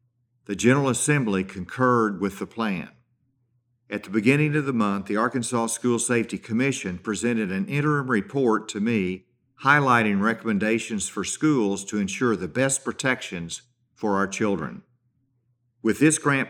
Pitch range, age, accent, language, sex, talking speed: 100-125 Hz, 50-69, American, English, male, 140 wpm